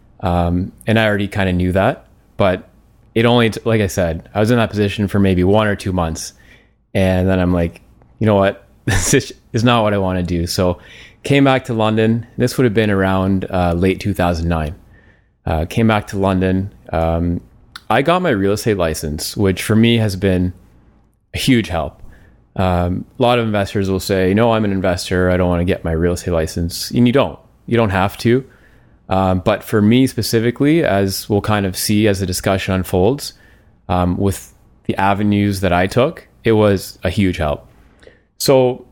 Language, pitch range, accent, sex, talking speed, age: English, 90-110 Hz, American, male, 195 wpm, 20-39